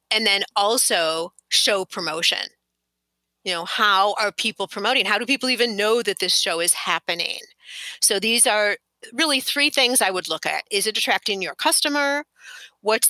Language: English